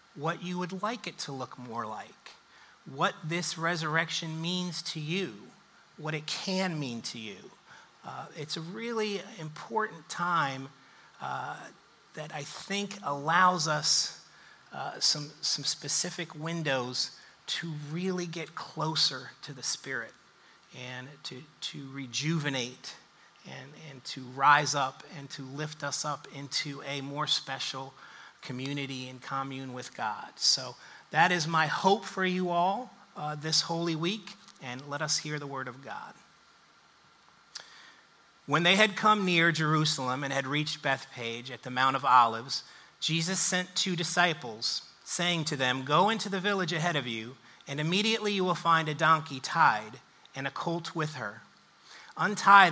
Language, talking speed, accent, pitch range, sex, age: English, 150 wpm, American, 140-175 Hz, male, 30-49